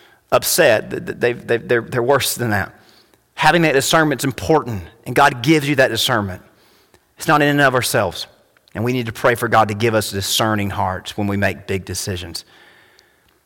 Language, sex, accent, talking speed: English, male, American, 185 wpm